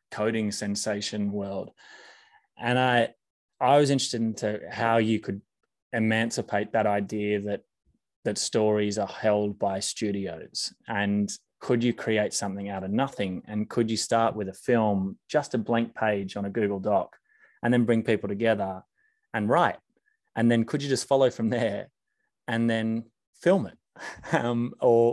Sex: male